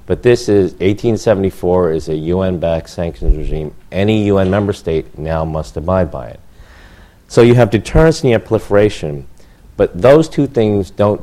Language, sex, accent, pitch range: English, male, American, 80-100 Hz